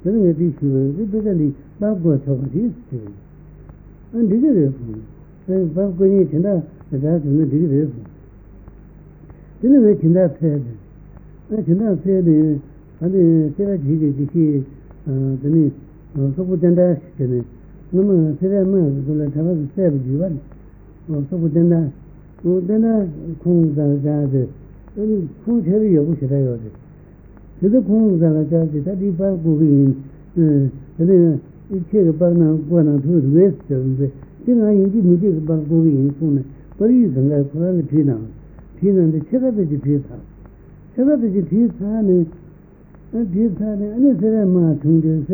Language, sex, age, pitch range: Italian, male, 60-79, 145-190 Hz